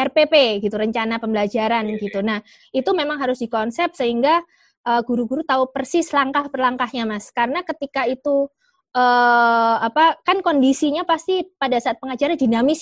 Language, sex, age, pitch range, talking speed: Indonesian, female, 20-39, 225-280 Hz, 135 wpm